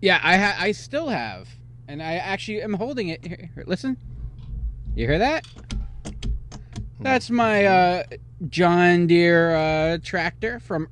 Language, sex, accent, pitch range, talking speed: English, male, American, 120-180 Hz, 145 wpm